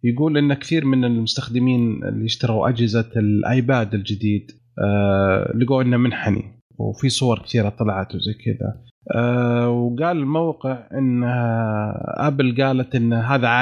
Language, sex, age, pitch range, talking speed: Arabic, male, 30-49, 115-135 Hz, 115 wpm